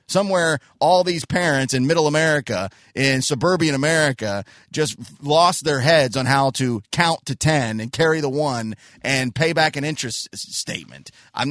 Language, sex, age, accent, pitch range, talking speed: English, male, 30-49, American, 140-205 Hz, 160 wpm